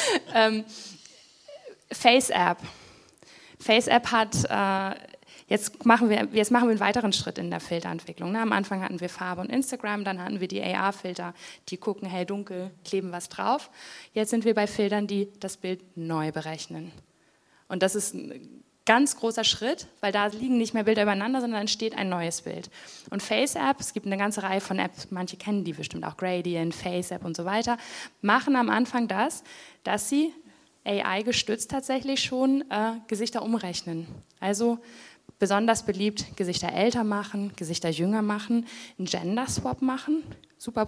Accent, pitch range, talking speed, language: German, 190-230 Hz, 155 wpm, German